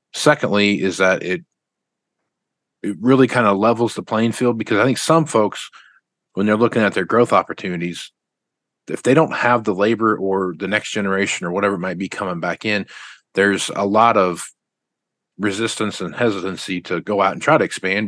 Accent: American